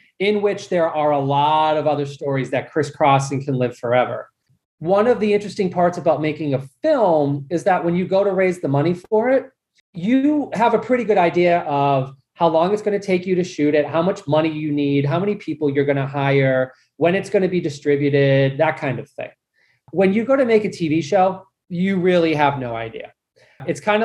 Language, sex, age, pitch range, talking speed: English, male, 30-49, 145-200 Hz, 215 wpm